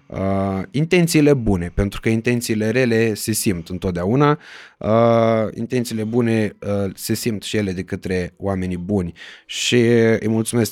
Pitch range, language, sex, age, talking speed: 95-120 Hz, Romanian, male, 20-39, 125 wpm